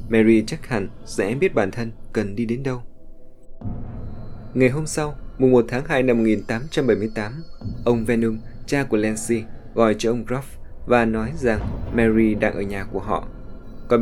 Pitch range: 110-125 Hz